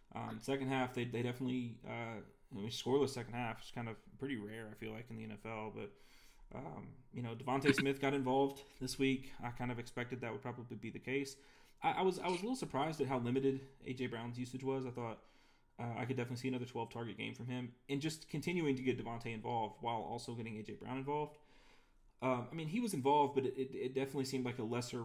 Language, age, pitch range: English, 20-39, 115-135 Hz